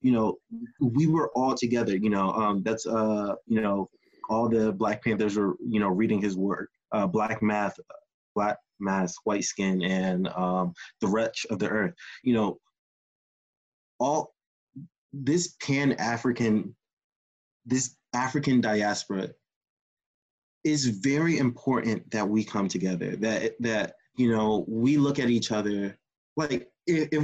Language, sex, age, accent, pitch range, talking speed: English, male, 20-39, American, 105-125 Hz, 140 wpm